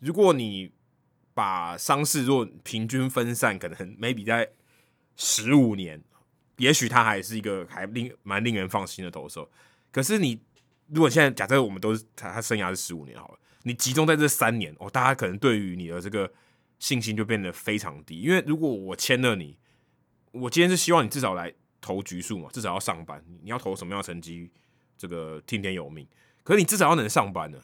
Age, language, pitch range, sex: 20-39, Chinese, 95-130 Hz, male